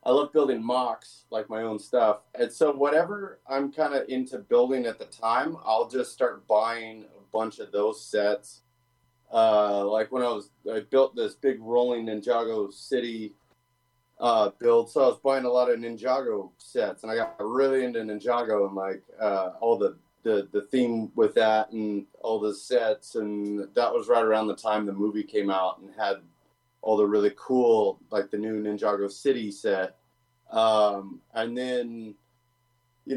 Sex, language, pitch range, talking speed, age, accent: male, English, 105-130 Hz, 175 wpm, 30-49, American